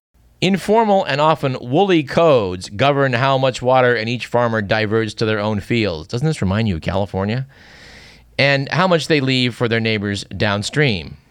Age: 50-69